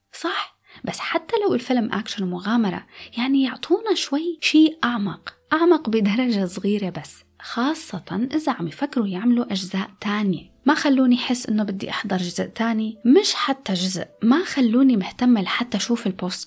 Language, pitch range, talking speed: Arabic, 185-255 Hz, 145 wpm